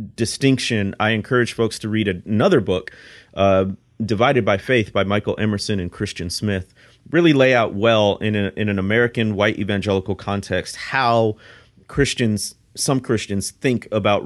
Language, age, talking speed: English, 30-49, 150 wpm